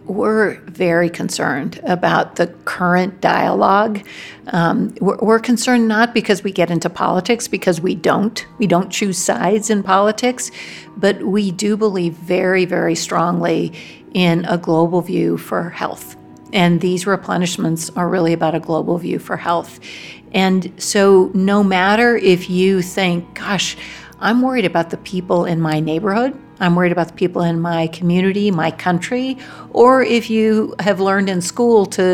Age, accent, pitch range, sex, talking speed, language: 50-69, American, 175-215 Hz, female, 155 wpm, English